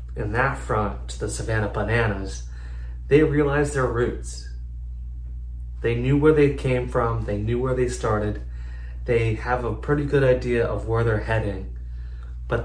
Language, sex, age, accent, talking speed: English, male, 30-49, American, 155 wpm